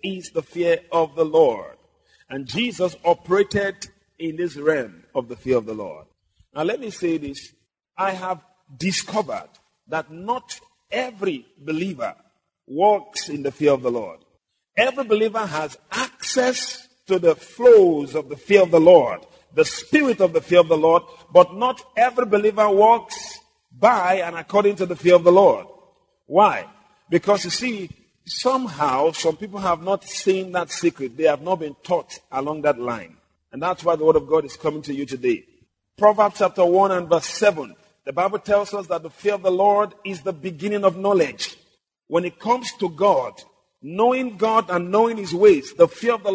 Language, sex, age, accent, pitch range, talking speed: English, male, 50-69, Nigerian, 170-240 Hz, 180 wpm